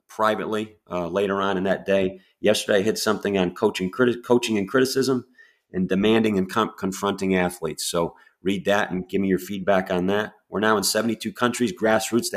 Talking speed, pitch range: 190 wpm, 90-115 Hz